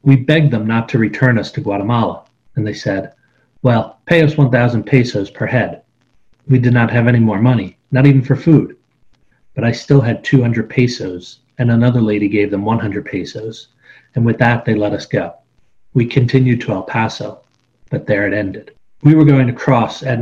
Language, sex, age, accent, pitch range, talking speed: English, male, 40-59, American, 110-130 Hz, 195 wpm